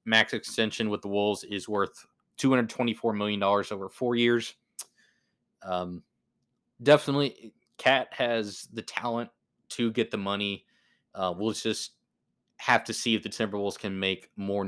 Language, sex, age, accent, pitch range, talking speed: English, male, 20-39, American, 100-115 Hz, 140 wpm